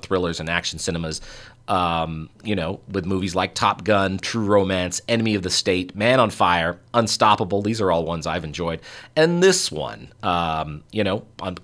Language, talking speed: English, 180 wpm